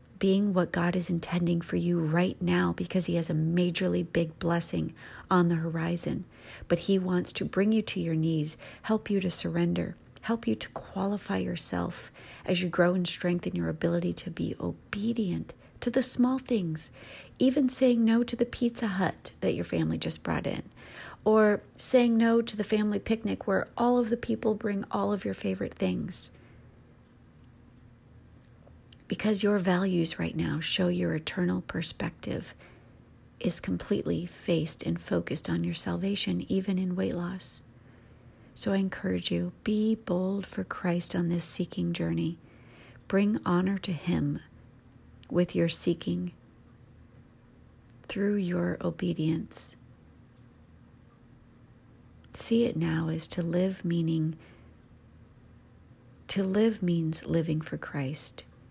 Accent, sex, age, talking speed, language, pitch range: American, female, 40-59, 140 wpm, English, 120-195 Hz